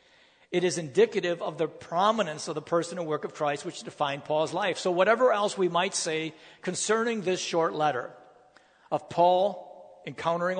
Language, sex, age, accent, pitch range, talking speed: English, male, 50-69, American, 155-190 Hz, 170 wpm